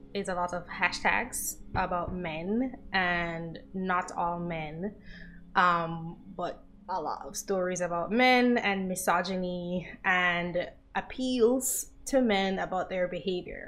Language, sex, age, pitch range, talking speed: English, female, 20-39, 170-205 Hz, 120 wpm